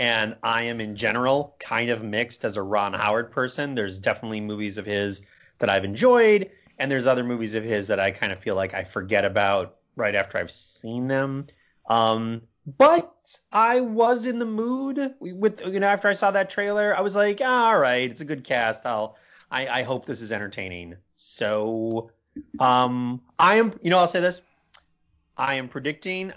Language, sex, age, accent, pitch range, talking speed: English, male, 30-49, American, 115-185 Hz, 190 wpm